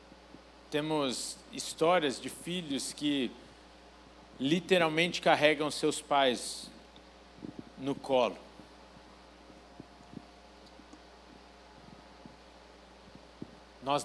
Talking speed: 50 wpm